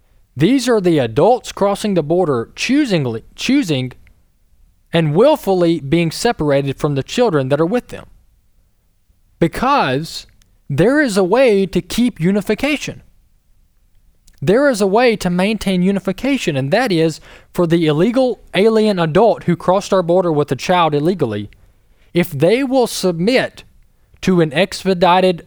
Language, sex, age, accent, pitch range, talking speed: English, male, 20-39, American, 125-195 Hz, 135 wpm